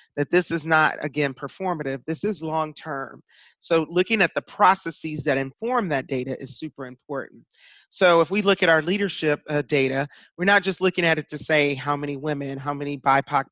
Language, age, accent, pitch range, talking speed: English, 40-59, American, 140-180 Hz, 195 wpm